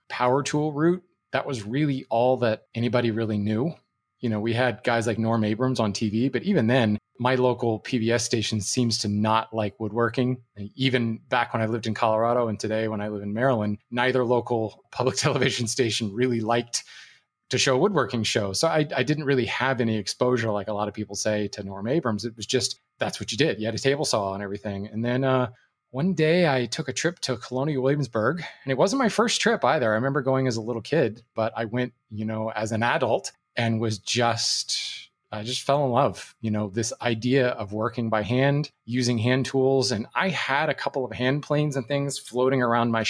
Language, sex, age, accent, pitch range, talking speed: English, male, 30-49, American, 110-130 Hz, 215 wpm